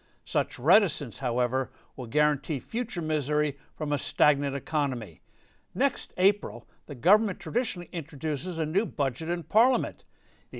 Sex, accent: male, American